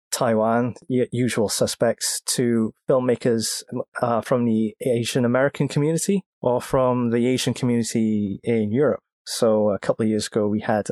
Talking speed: 145 wpm